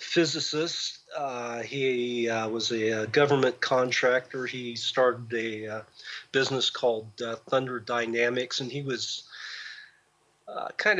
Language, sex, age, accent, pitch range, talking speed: English, male, 40-59, American, 120-135 Hz, 120 wpm